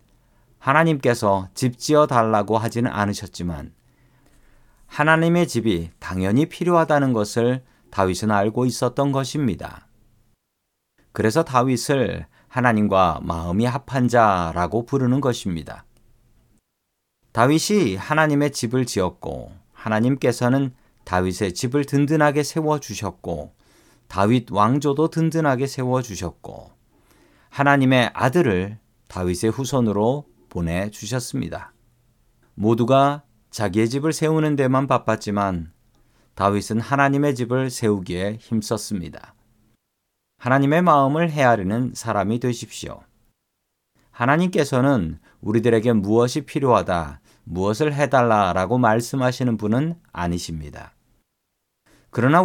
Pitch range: 105-140 Hz